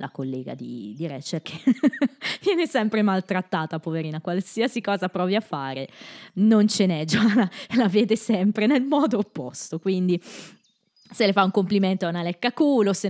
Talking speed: 165 wpm